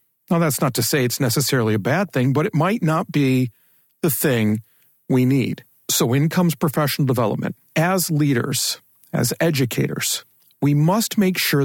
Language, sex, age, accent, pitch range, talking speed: English, male, 40-59, American, 120-160 Hz, 165 wpm